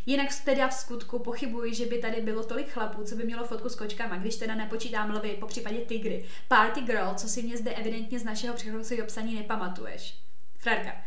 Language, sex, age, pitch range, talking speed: Czech, female, 20-39, 215-250 Hz, 205 wpm